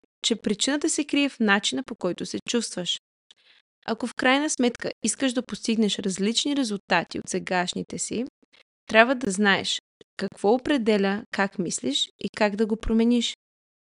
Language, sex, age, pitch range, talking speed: Bulgarian, female, 20-39, 195-255 Hz, 145 wpm